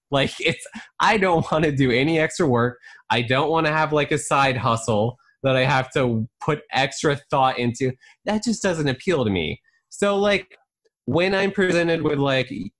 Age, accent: 20-39, American